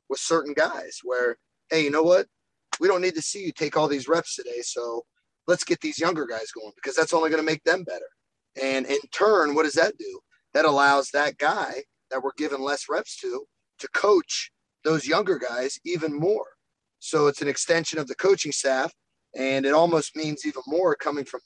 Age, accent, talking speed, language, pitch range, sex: 30-49, American, 205 wpm, English, 140-215 Hz, male